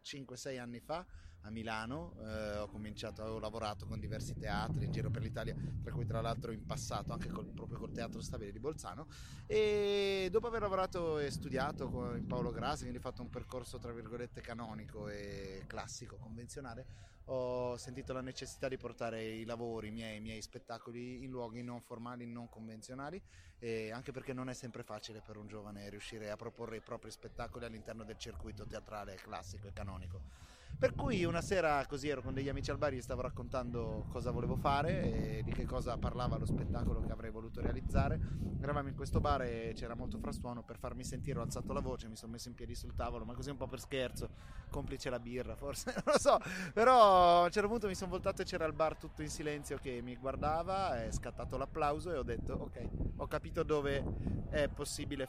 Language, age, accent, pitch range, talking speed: Italian, 30-49, native, 110-135 Hz, 200 wpm